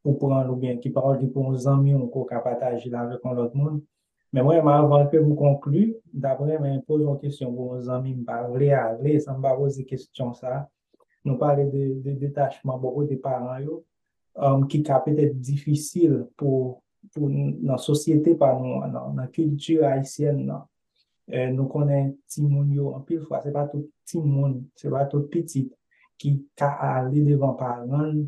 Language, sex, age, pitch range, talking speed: English, male, 20-39, 130-150 Hz, 165 wpm